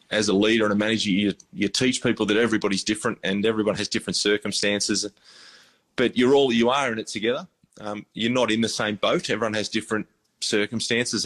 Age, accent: 20-39, Australian